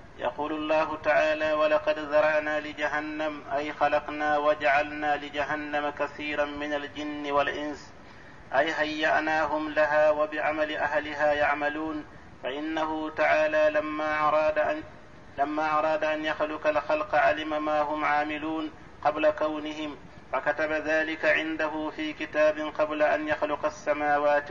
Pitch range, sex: 150-155 Hz, male